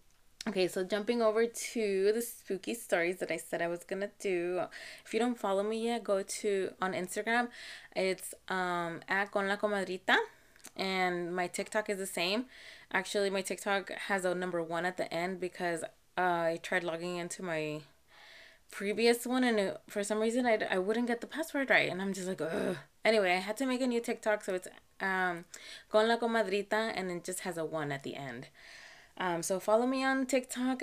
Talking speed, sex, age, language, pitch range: 200 wpm, female, 20-39, English, 175-220 Hz